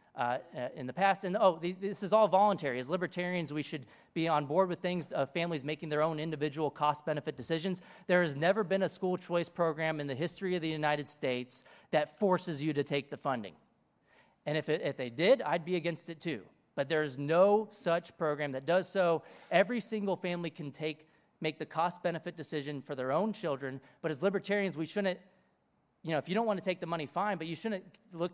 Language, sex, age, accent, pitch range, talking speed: English, male, 30-49, American, 145-180 Hz, 215 wpm